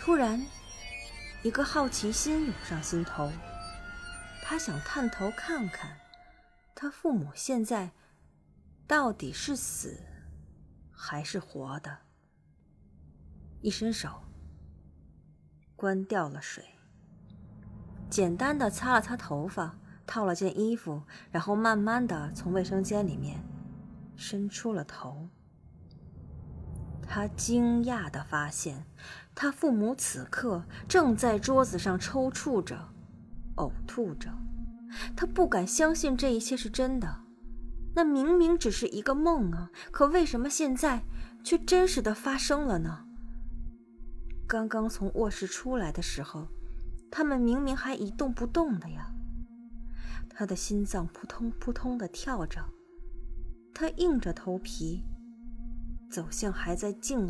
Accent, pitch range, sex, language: native, 150-250 Hz, female, Chinese